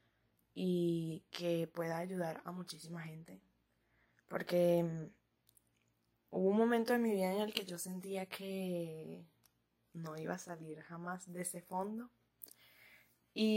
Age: 20-39